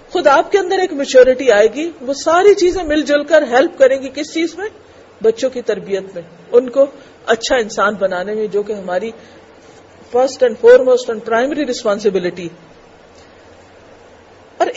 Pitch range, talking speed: 230-365 Hz, 165 wpm